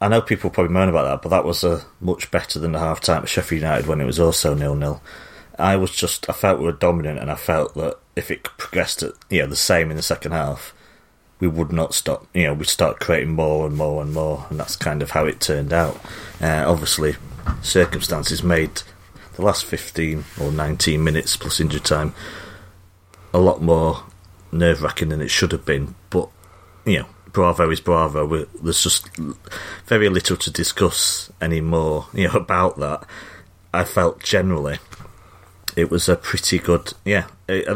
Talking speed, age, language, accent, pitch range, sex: 190 wpm, 30-49, English, British, 80-95 Hz, male